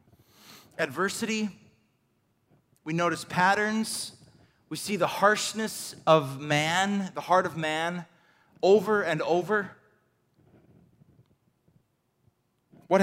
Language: English